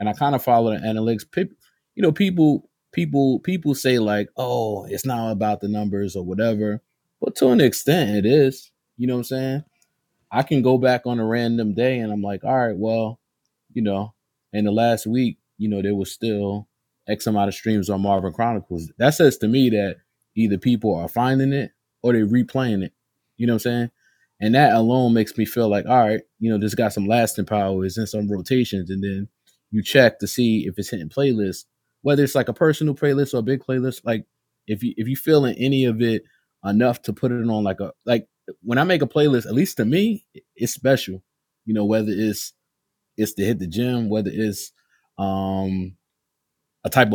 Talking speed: 215 wpm